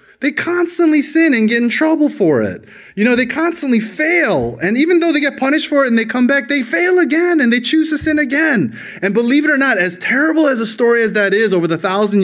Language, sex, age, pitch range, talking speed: English, male, 20-39, 130-205 Hz, 250 wpm